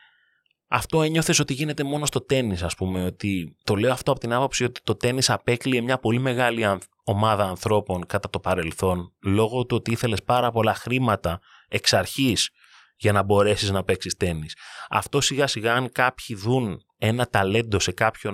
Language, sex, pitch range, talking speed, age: Greek, male, 100-120 Hz, 175 wpm, 30-49